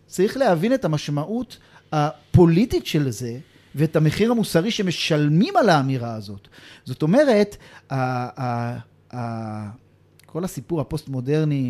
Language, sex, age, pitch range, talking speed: Hebrew, male, 40-59, 145-190 Hz, 120 wpm